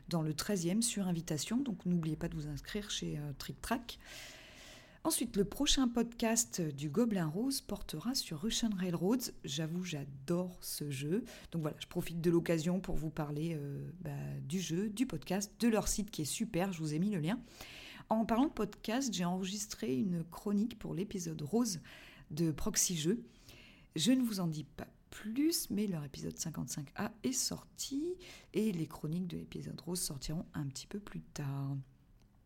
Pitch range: 160-215 Hz